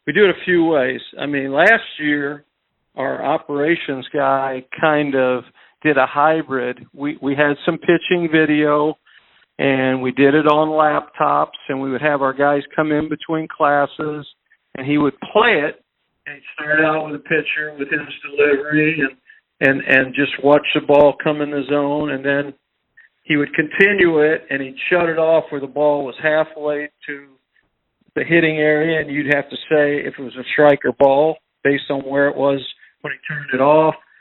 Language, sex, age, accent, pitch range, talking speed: English, male, 50-69, American, 140-150 Hz, 190 wpm